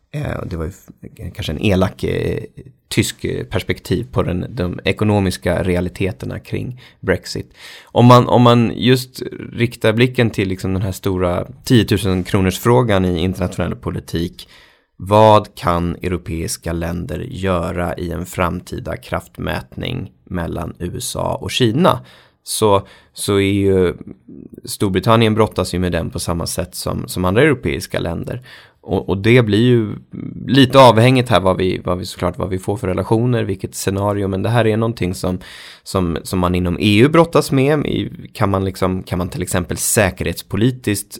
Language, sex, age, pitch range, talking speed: Swedish, male, 20-39, 90-115 Hz, 150 wpm